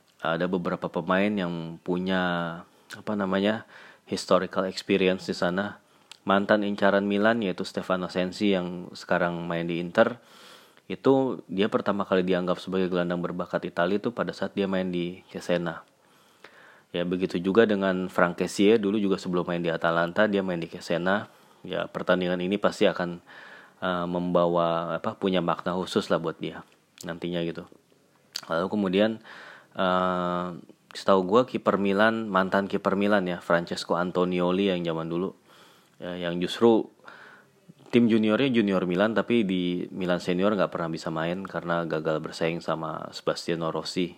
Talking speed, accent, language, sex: 145 wpm, native, Indonesian, male